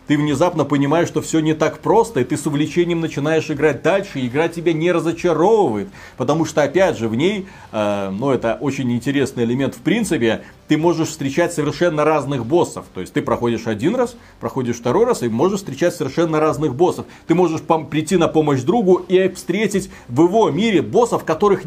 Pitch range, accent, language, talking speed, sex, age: 115-165 Hz, native, Russian, 190 wpm, male, 30-49